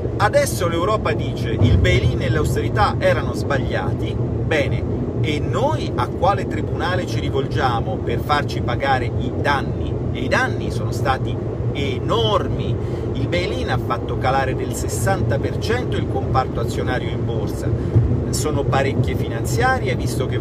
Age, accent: 40-59, native